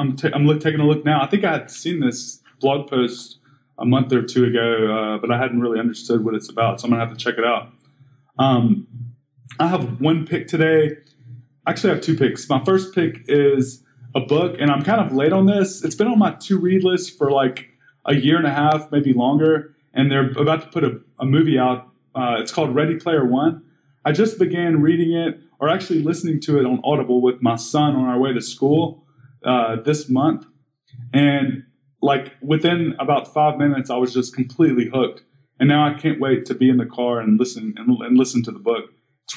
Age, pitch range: 20-39, 125-160 Hz